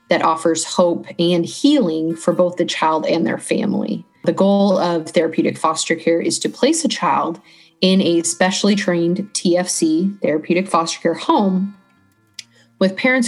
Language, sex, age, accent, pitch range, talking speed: English, female, 20-39, American, 165-195 Hz, 155 wpm